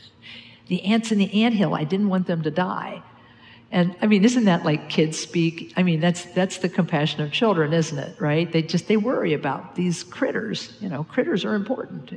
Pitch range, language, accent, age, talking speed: 150-175 Hz, English, American, 50-69, 205 wpm